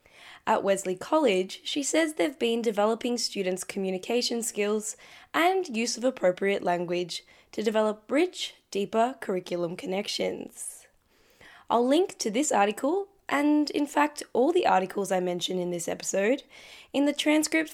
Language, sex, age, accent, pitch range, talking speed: English, female, 10-29, Australian, 195-280 Hz, 140 wpm